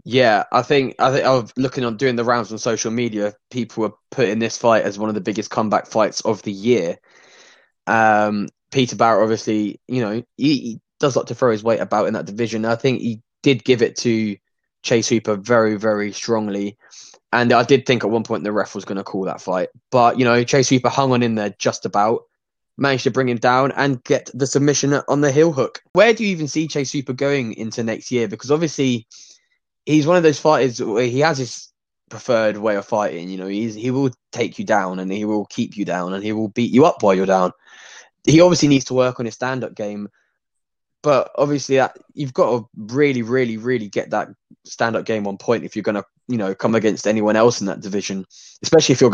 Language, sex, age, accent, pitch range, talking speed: English, male, 10-29, British, 105-135 Hz, 230 wpm